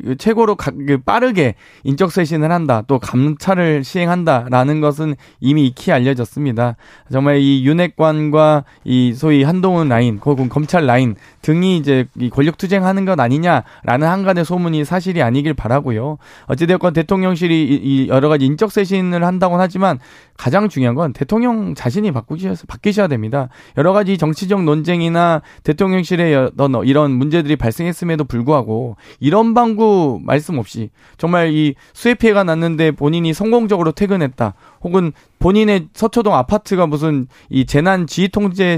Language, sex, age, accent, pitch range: Korean, male, 20-39, native, 135-185 Hz